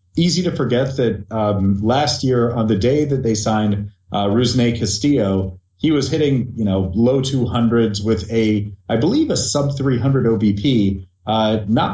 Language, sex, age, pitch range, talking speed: English, male, 30-49, 100-120 Hz, 165 wpm